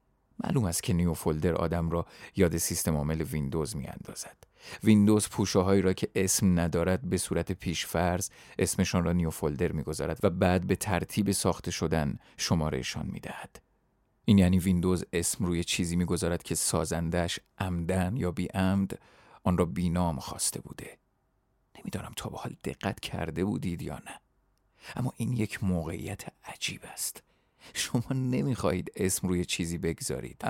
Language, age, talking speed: Persian, 40-59, 150 wpm